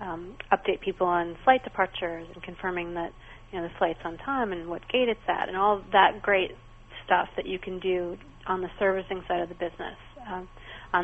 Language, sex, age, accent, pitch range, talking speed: English, female, 30-49, American, 175-200 Hz, 205 wpm